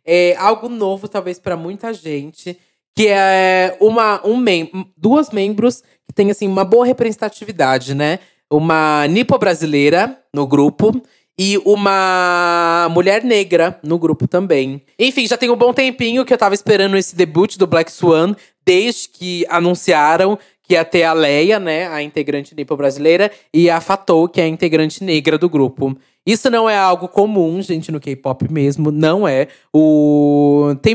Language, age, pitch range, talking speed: Portuguese, 20-39, 160-210 Hz, 155 wpm